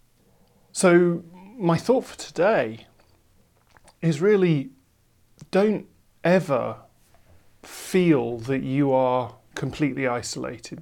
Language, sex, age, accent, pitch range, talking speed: English, male, 30-49, British, 120-155 Hz, 85 wpm